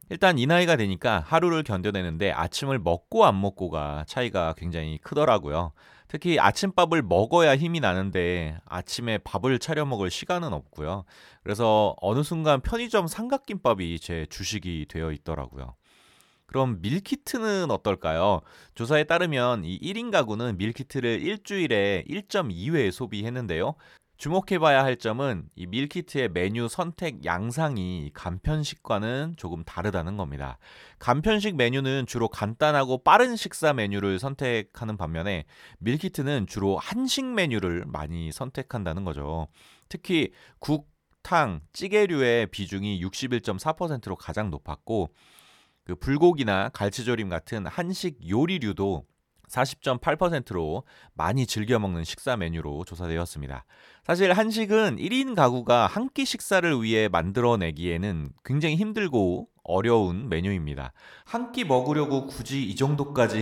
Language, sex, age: Korean, male, 30-49